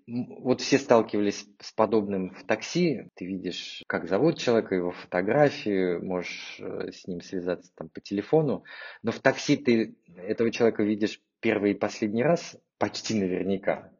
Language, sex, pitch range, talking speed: Russian, male, 95-120 Hz, 140 wpm